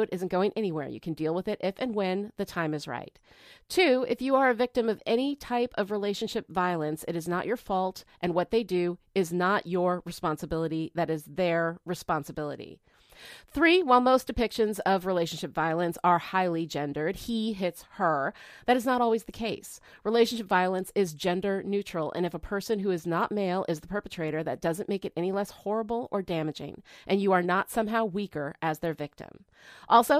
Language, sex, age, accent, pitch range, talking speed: English, female, 30-49, American, 170-220 Hz, 195 wpm